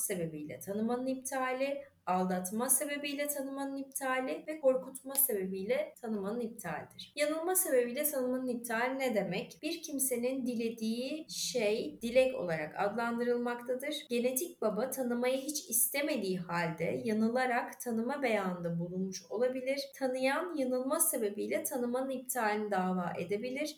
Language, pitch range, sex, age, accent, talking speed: Turkish, 210-275 Hz, female, 30-49, native, 110 wpm